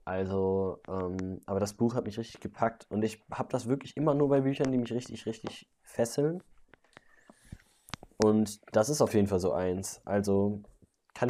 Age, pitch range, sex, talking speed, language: 20-39, 95-125 Hz, male, 175 wpm, German